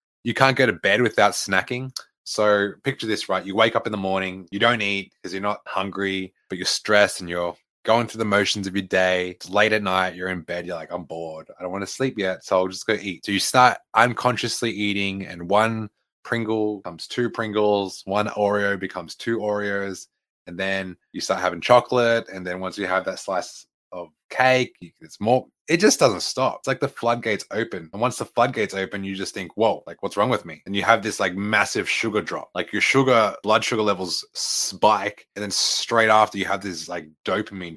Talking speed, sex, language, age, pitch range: 220 wpm, male, English, 20-39, 95-110 Hz